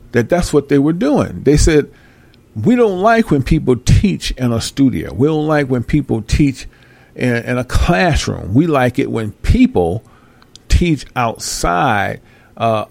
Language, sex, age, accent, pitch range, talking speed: English, male, 50-69, American, 115-150 Hz, 165 wpm